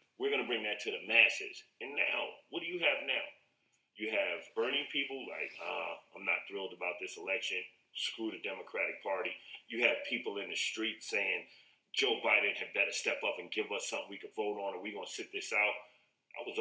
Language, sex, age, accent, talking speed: English, male, 30-49, American, 220 wpm